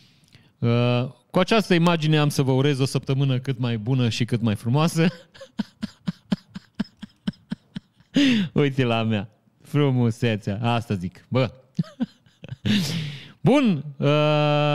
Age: 30-49